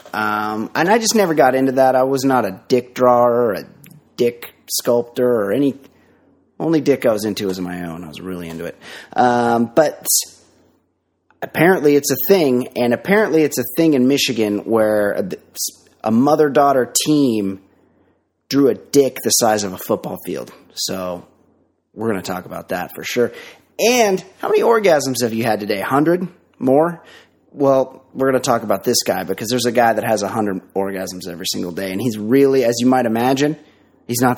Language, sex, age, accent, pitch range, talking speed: English, male, 30-49, American, 105-145 Hz, 195 wpm